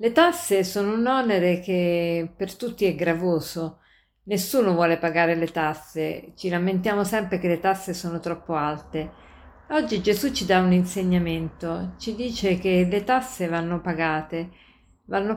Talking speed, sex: 150 wpm, female